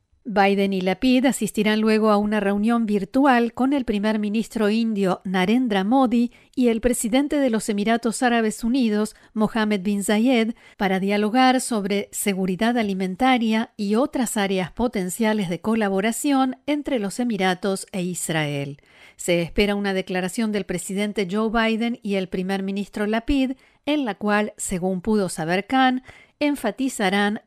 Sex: female